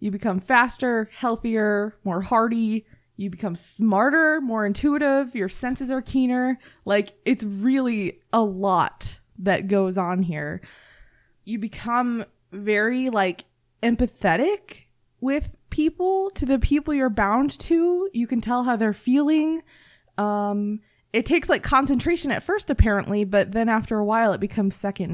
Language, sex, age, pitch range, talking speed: English, female, 20-39, 190-240 Hz, 140 wpm